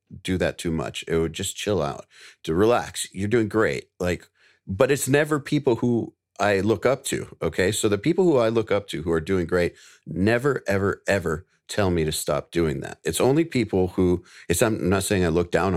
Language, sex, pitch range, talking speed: English, male, 80-105 Hz, 215 wpm